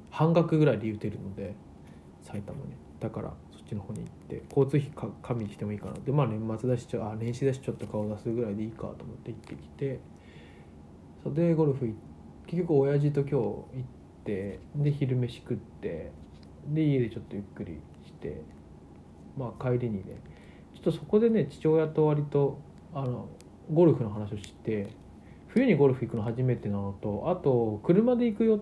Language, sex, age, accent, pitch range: Japanese, male, 20-39, native, 100-150 Hz